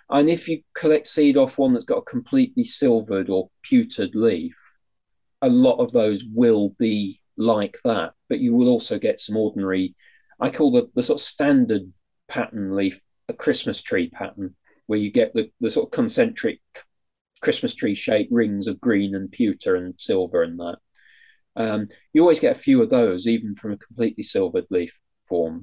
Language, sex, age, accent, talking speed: English, male, 30-49, British, 185 wpm